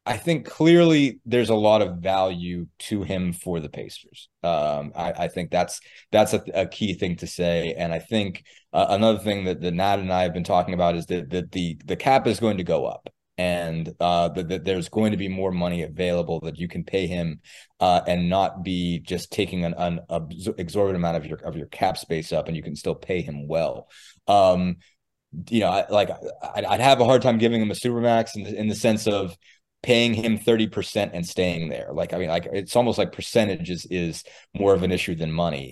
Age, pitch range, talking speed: 20-39, 85-105 Hz, 225 wpm